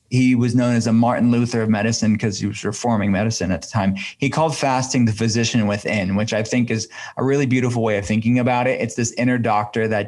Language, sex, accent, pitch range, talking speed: English, male, American, 110-130 Hz, 240 wpm